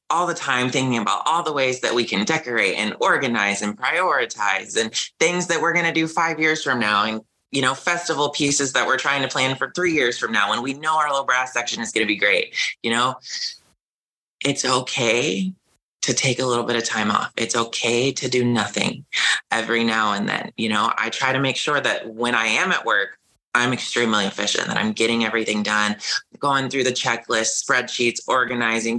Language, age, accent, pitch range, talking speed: English, 20-39, American, 115-135 Hz, 210 wpm